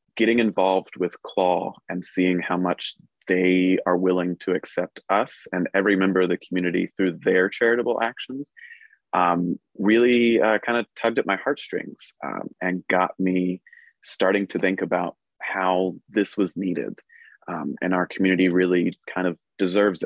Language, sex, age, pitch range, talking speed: English, male, 30-49, 90-105 Hz, 155 wpm